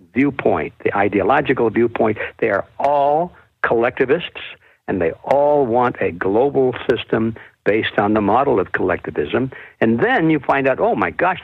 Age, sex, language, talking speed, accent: 60-79, male, English, 150 wpm, American